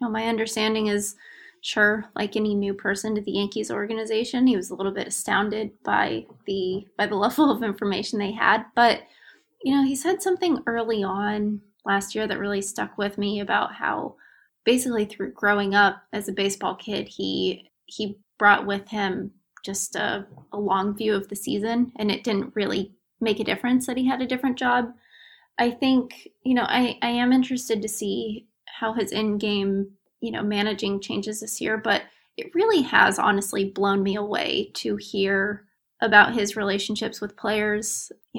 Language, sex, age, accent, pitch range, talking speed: English, female, 20-39, American, 200-235 Hz, 180 wpm